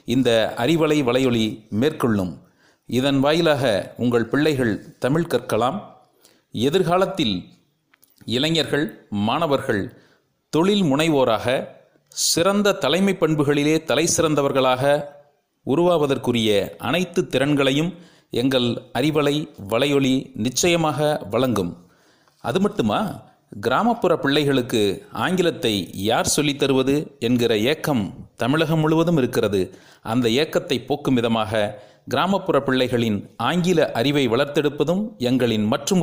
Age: 40-59